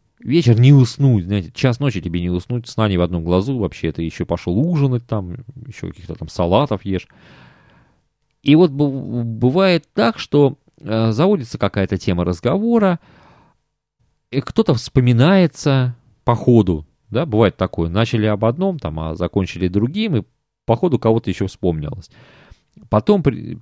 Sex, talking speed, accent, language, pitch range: male, 150 wpm, native, Russian, 90-130 Hz